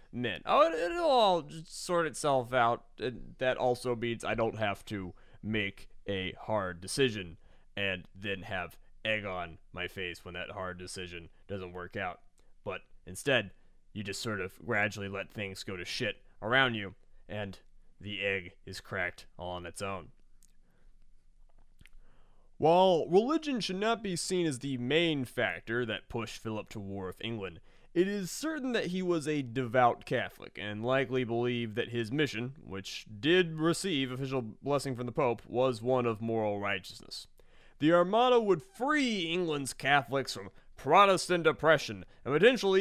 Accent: American